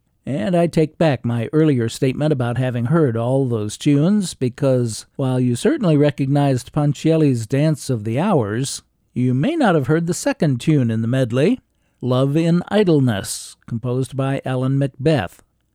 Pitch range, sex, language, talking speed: 125-155 Hz, male, English, 155 wpm